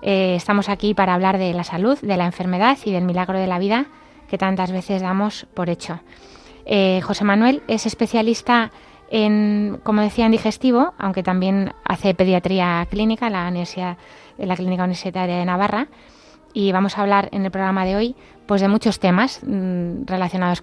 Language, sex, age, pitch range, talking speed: Spanish, female, 20-39, 185-220 Hz, 175 wpm